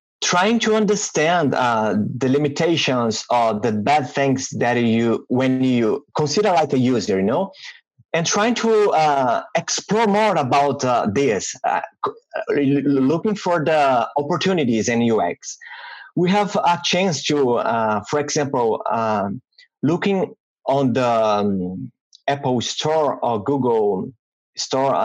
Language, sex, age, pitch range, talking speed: English, male, 30-49, 135-210 Hz, 130 wpm